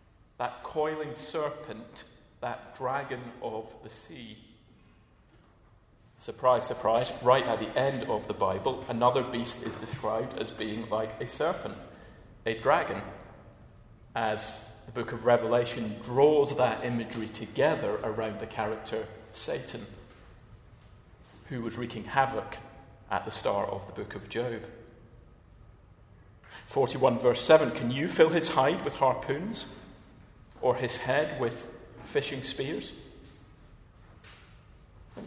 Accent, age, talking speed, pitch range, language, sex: British, 40-59, 120 wpm, 110-125 Hz, English, male